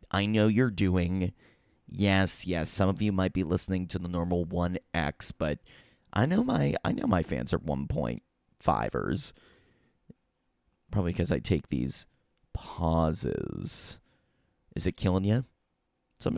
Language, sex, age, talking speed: English, male, 30-49, 135 wpm